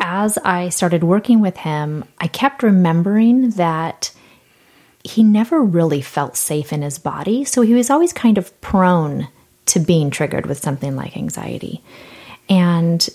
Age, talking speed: 30-49, 150 wpm